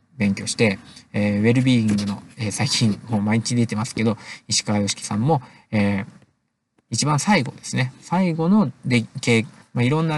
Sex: male